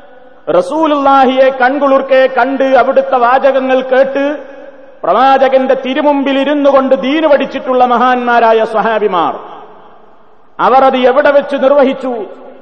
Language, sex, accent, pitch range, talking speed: Malayalam, male, native, 255-280 Hz, 80 wpm